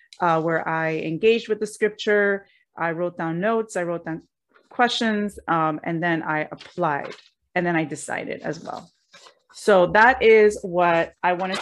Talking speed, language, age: 165 wpm, English, 30-49